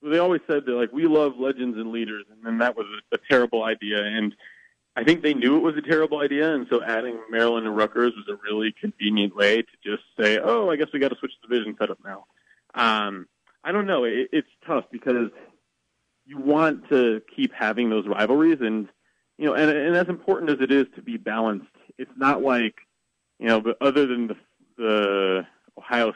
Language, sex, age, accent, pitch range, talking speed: English, male, 30-49, American, 105-130 Hz, 210 wpm